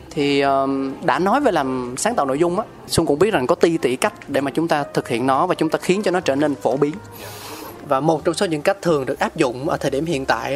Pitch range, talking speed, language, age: 135-175 Hz, 290 wpm, Vietnamese, 20-39